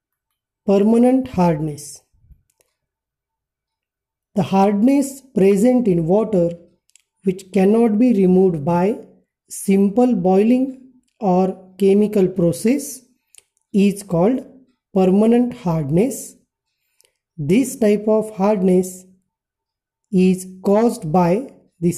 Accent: Indian